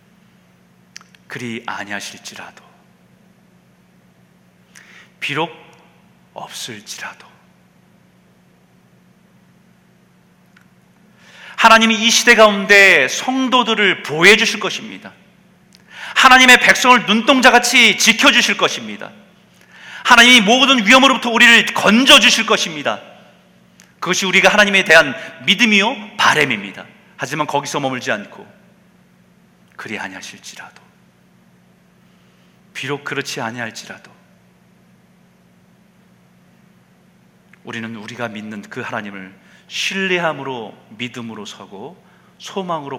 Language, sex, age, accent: Korean, male, 40-59, native